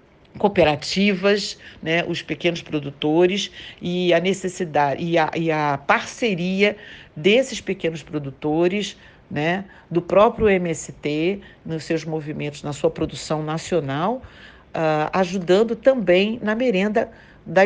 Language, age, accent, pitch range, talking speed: Portuguese, 60-79, Brazilian, 155-190 Hz, 110 wpm